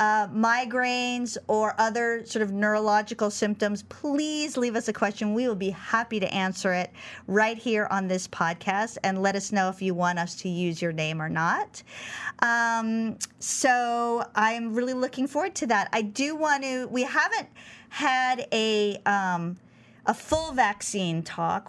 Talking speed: 165 wpm